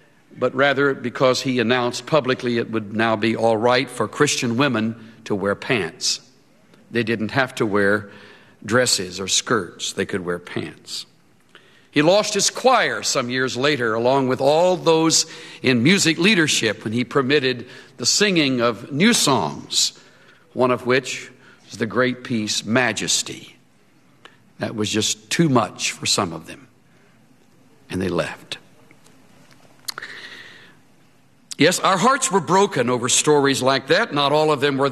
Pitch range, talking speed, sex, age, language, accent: 115-155 Hz, 150 wpm, male, 60-79, English, American